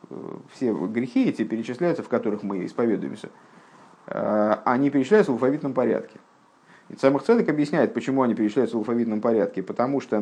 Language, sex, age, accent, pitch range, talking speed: Russian, male, 50-69, native, 115-150 Hz, 140 wpm